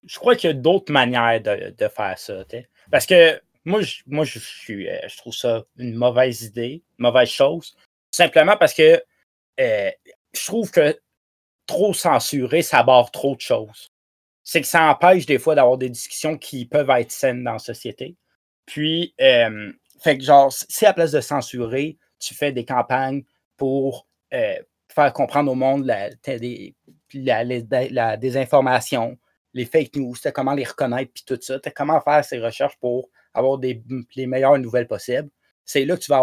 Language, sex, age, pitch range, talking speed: French, male, 30-49, 120-155 Hz, 185 wpm